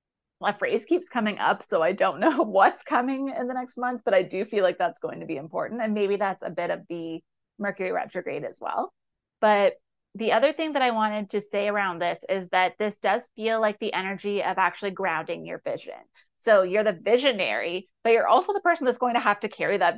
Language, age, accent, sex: English, 30-49, American, female